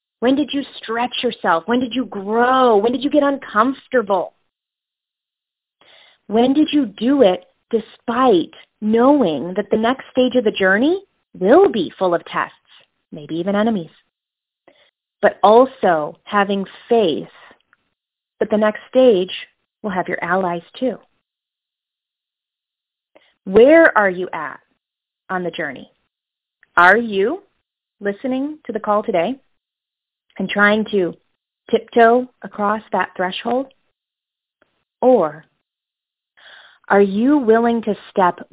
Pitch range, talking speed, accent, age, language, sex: 190-250 Hz, 120 wpm, American, 30-49, English, female